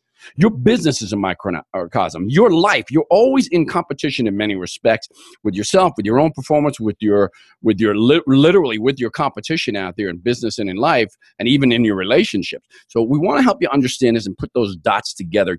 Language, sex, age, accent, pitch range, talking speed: English, male, 40-59, American, 115-170 Hz, 205 wpm